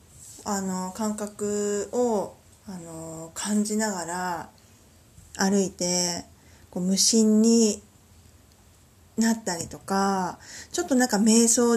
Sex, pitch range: female, 170-220 Hz